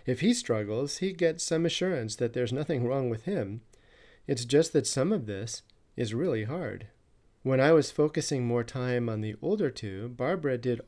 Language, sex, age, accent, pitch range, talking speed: English, male, 40-59, American, 110-145 Hz, 190 wpm